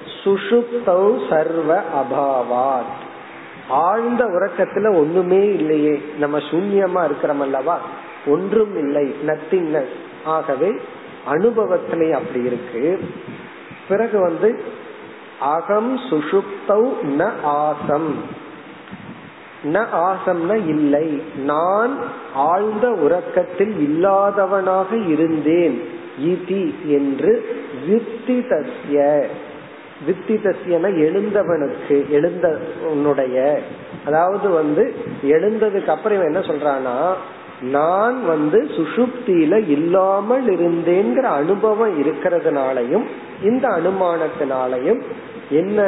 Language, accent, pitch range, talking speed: Tamil, native, 150-215 Hz, 40 wpm